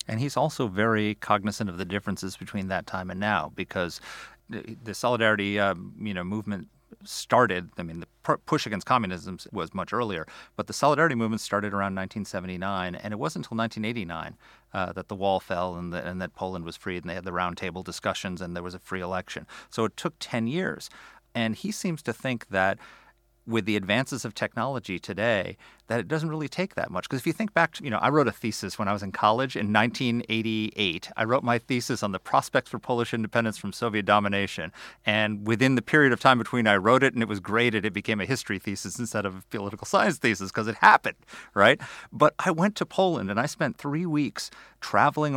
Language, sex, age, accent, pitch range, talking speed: English, male, 40-59, American, 100-120 Hz, 215 wpm